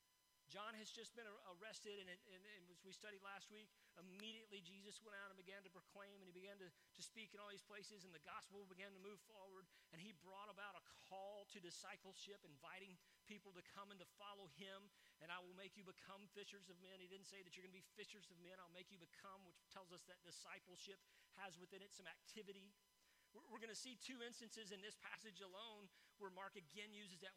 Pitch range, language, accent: 185-215 Hz, English, American